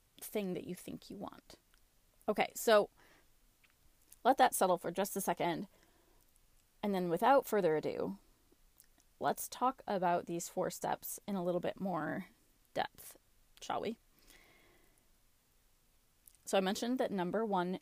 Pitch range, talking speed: 175-220 Hz, 135 wpm